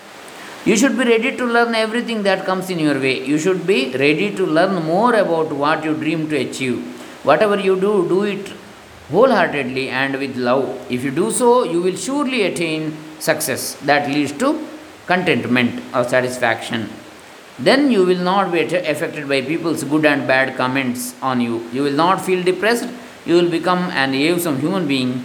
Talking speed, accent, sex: 180 wpm, native, male